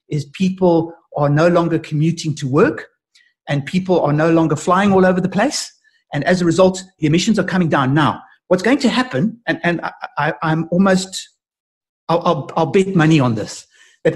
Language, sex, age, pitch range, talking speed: English, male, 60-79, 155-185 Hz, 190 wpm